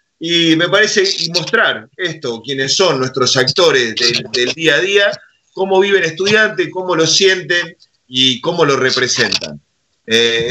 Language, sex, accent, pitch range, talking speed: Spanish, male, Argentinian, 125-175 Hz, 145 wpm